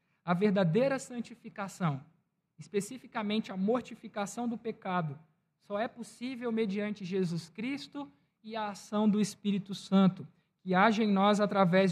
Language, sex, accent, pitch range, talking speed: Portuguese, male, Brazilian, 175-230 Hz, 125 wpm